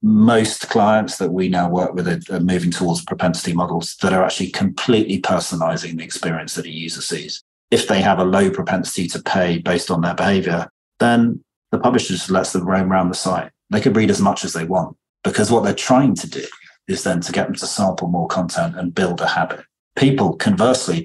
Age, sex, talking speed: 30-49, male, 210 wpm